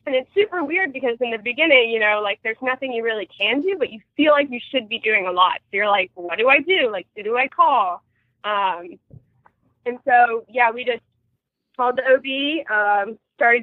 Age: 20-39